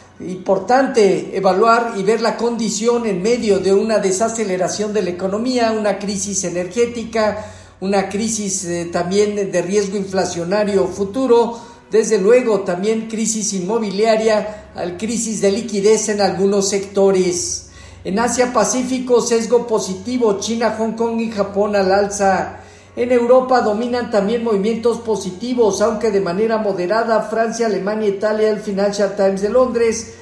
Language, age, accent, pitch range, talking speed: Spanish, 50-69, Mexican, 195-230 Hz, 125 wpm